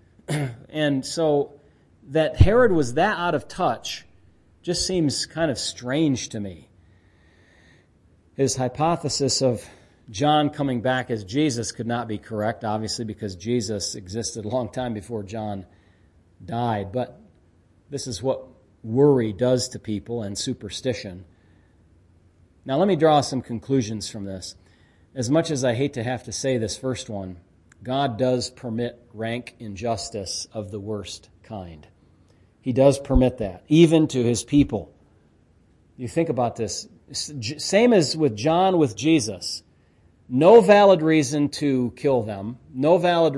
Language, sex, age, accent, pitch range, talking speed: English, male, 40-59, American, 95-135 Hz, 140 wpm